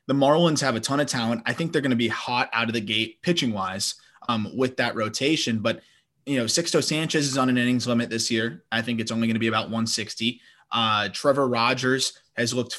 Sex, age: male, 20-39